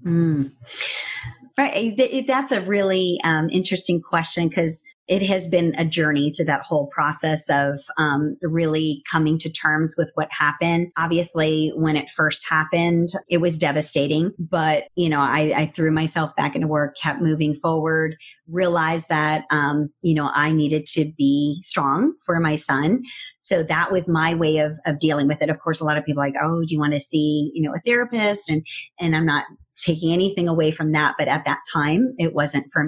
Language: English